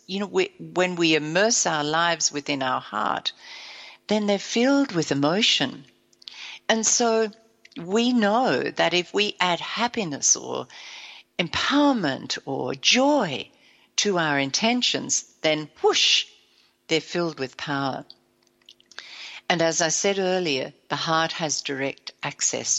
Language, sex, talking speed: English, female, 125 wpm